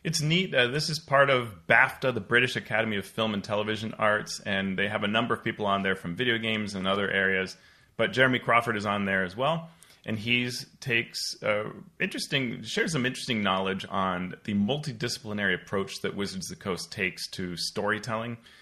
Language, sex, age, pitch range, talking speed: English, male, 30-49, 90-115 Hz, 185 wpm